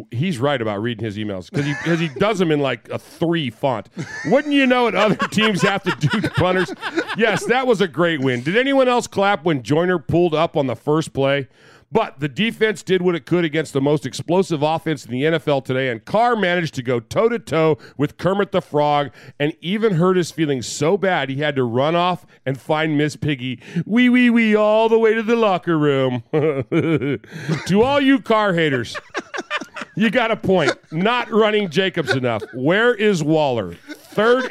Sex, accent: male, American